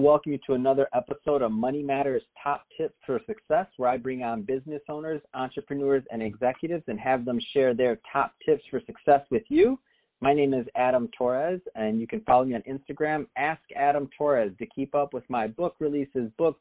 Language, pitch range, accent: English, 125-150 Hz, American